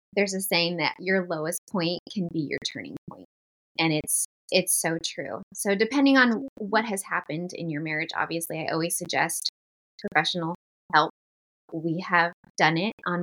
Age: 20-39